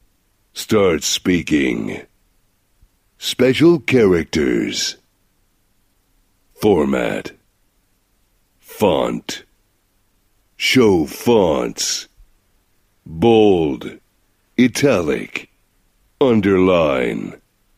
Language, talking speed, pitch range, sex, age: German, 35 wpm, 95-105 Hz, male, 60-79